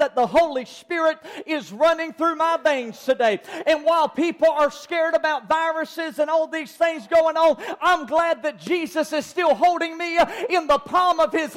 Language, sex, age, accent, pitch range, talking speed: English, male, 40-59, American, 230-310 Hz, 185 wpm